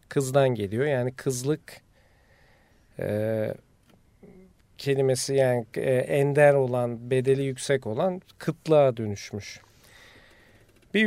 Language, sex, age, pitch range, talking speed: Turkish, male, 40-59, 115-150 Hz, 80 wpm